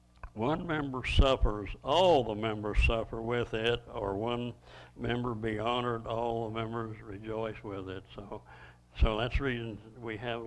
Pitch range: 105-125 Hz